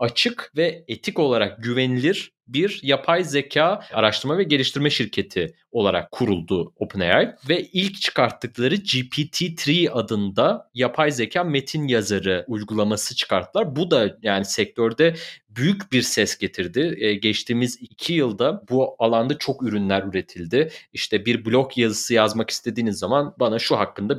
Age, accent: 30-49, native